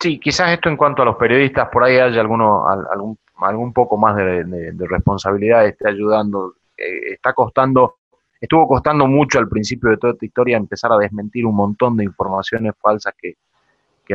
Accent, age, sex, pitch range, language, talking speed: Argentinian, 20-39, male, 100-125 Hz, Spanish, 180 wpm